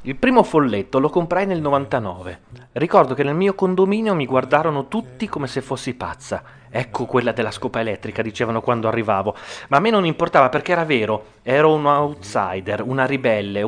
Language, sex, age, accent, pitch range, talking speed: Italian, male, 30-49, native, 115-150 Hz, 175 wpm